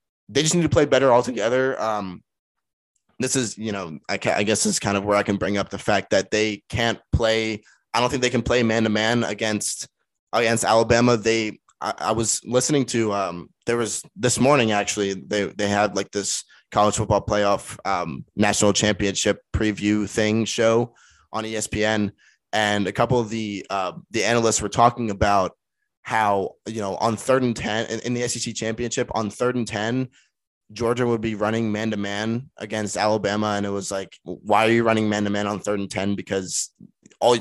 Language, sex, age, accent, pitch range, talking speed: English, male, 20-39, American, 105-120 Hz, 190 wpm